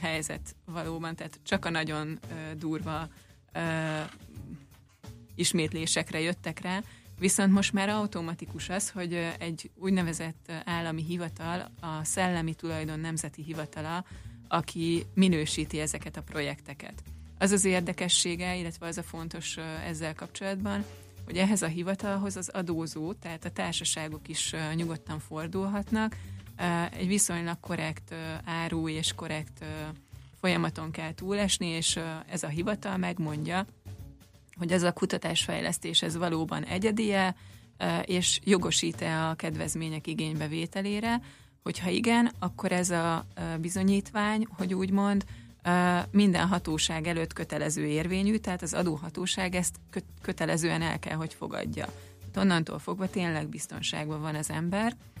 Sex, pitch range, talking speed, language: female, 155-185 Hz, 115 wpm, Hungarian